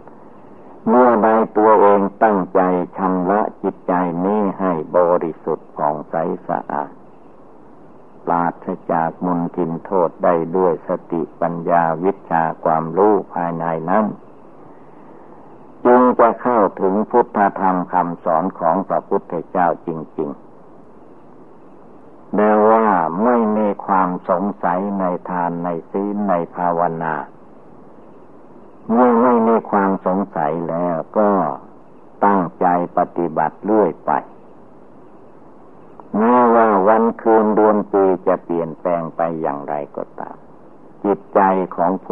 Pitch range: 85-105 Hz